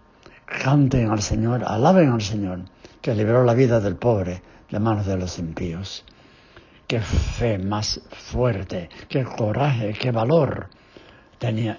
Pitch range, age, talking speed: 90-115 Hz, 60-79, 130 wpm